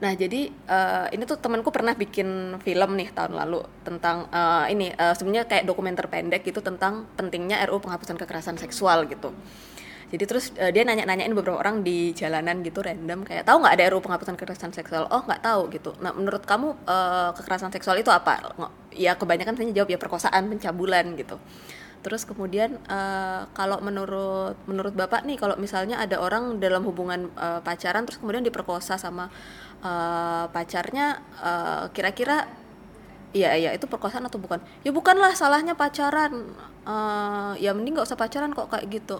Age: 20-39